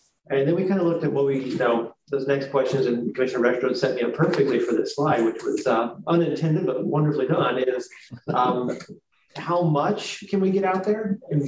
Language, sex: English, male